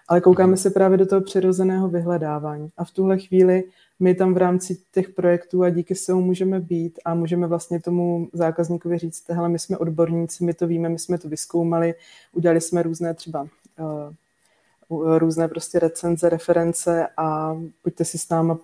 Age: 20-39